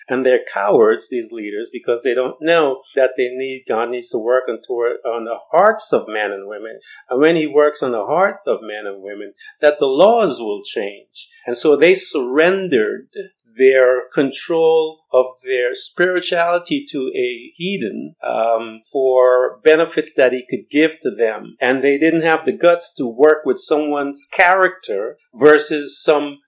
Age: 50-69